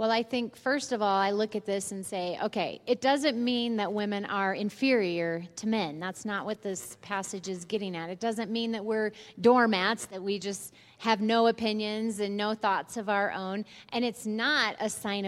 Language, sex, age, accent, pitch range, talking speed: English, female, 30-49, American, 190-230 Hz, 210 wpm